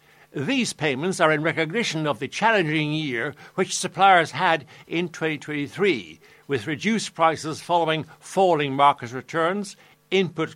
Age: 60-79